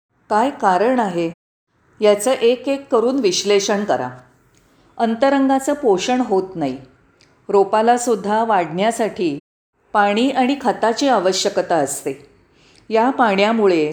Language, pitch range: Marathi, 190-245 Hz